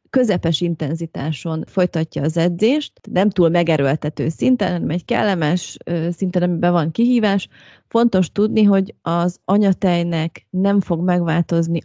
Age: 30-49